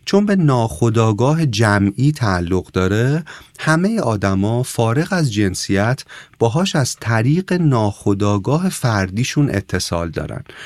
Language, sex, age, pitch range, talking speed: Persian, male, 40-59, 95-145 Hz, 100 wpm